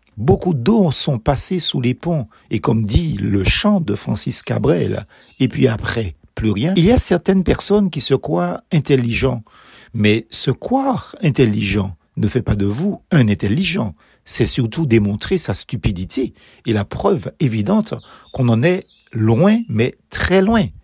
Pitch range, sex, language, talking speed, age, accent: 105-170 Hz, male, French, 160 wpm, 50-69, French